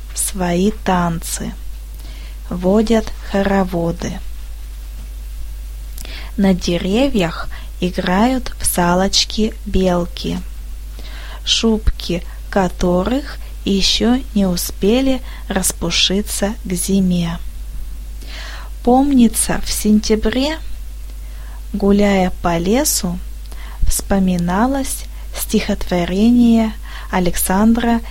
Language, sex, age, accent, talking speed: Russian, female, 20-39, native, 60 wpm